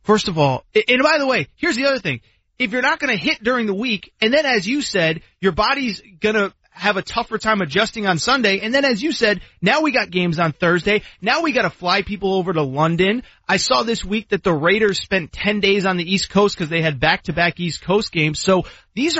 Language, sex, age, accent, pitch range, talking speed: English, male, 30-49, American, 165-220 Hz, 245 wpm